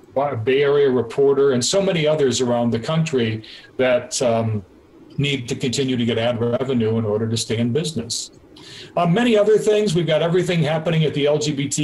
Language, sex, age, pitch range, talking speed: English, male, 40-59, 130-175 Hz, 180 wpm